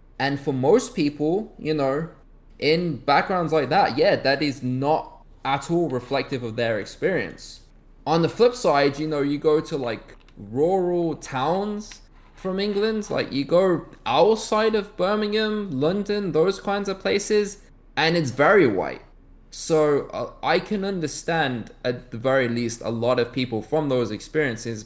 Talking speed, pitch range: 155 wpm, 125-170 Hz